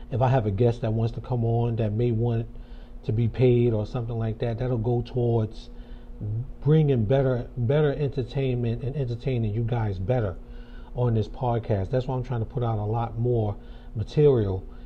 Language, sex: English, male